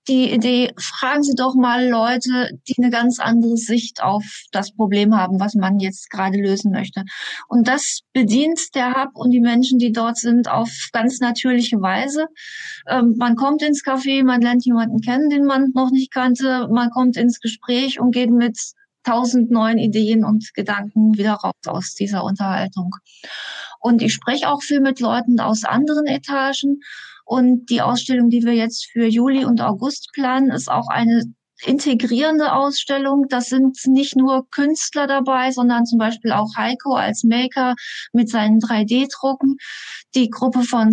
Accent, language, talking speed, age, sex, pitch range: German, German, 165 wpm, 20-39, female, 230-265 Hz